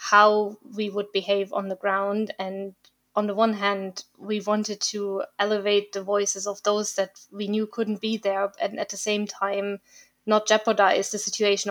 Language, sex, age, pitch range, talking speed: English, female, 20-39, 195-215 Hz, 180 wpm